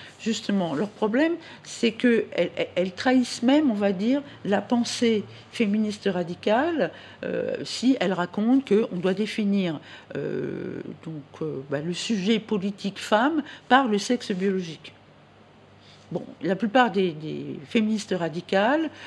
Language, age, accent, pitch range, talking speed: French, 50-69, French, 185-240 Hz, 130 wpm